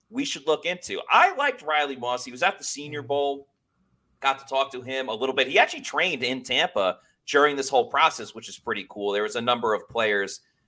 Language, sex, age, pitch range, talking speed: English, male, 30-49, 120-200 Hz, 230 wpm